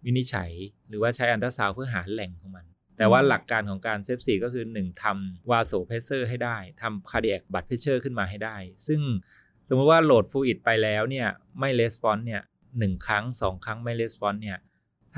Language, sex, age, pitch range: Thai, male, 20-39, 95-120 Hz